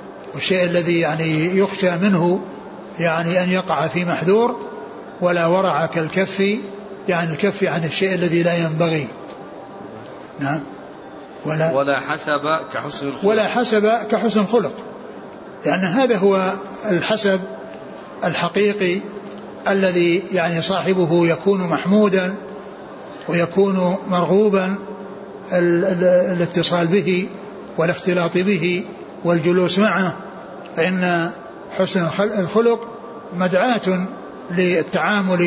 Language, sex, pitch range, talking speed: Arabic, male, 170-200 Hz, 90 wpm